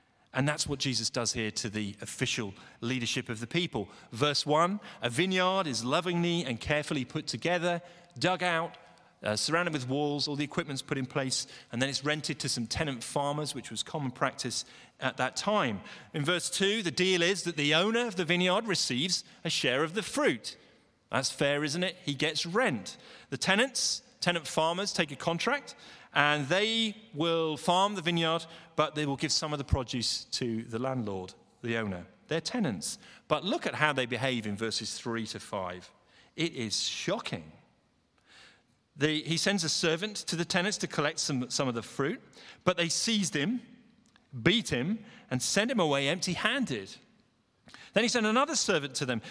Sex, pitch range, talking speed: male, 130-185 Hz, 180 wpm